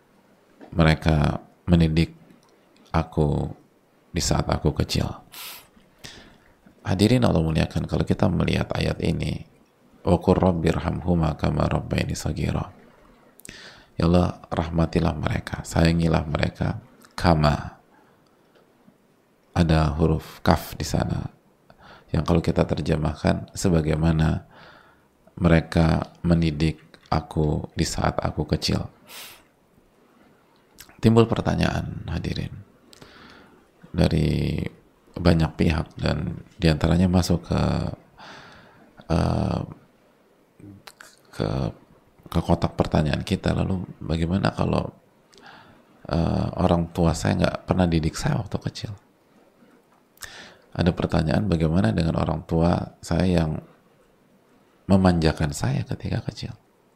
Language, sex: English, male